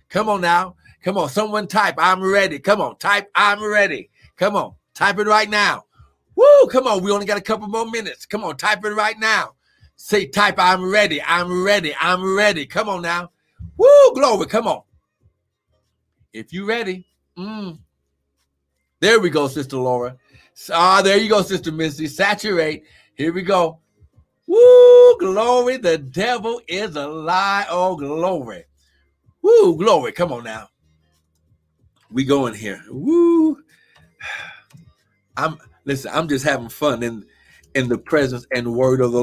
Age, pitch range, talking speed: 60-79, 130-200 Hz, 160 wpm